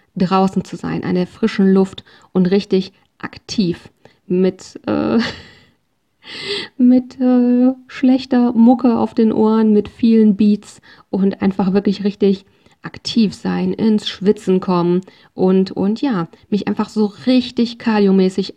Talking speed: 125 wpm